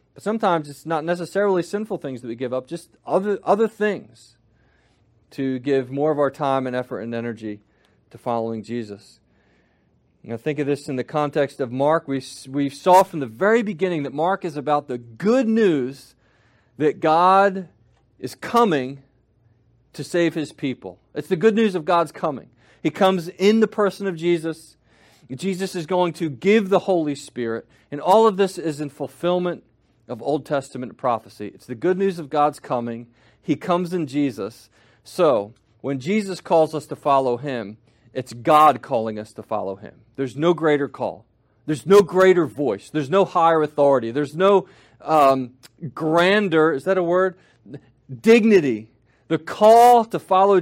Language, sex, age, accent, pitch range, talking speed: English, male, 40-59, American, 125-180 Hz, 170 wpm